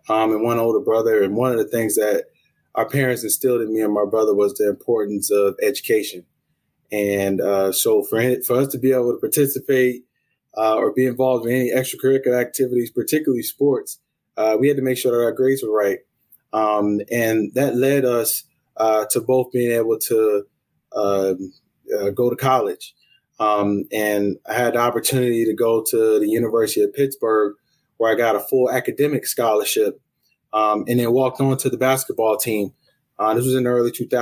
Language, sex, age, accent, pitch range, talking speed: English, male, 20-39, American, 110-135 Hz, 190 wpm